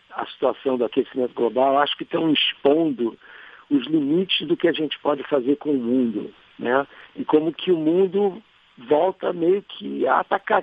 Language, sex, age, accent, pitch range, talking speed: Portuguese, male, 60-79, Brazilian, 125-160 Hz, 175 wpm